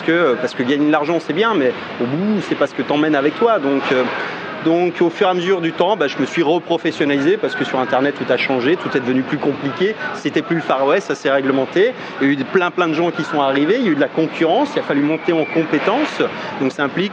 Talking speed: 275 wpm